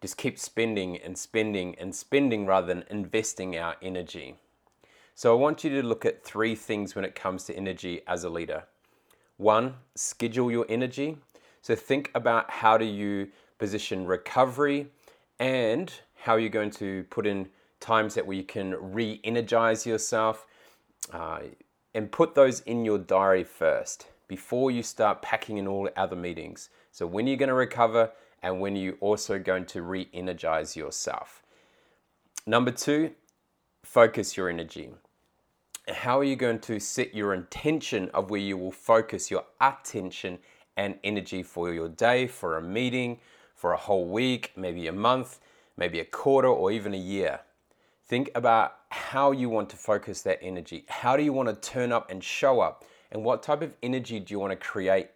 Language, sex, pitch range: English, male, 95-125 Hz